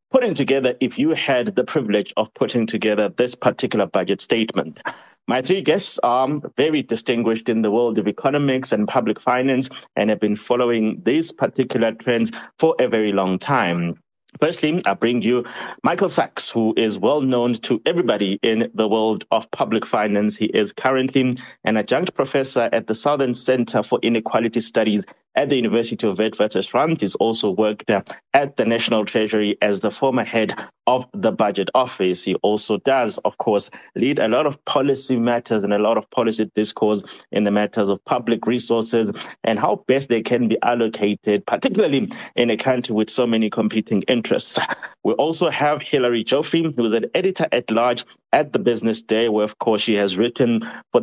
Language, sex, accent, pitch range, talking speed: English, male, South African, 110-130 Hz, 180 wpm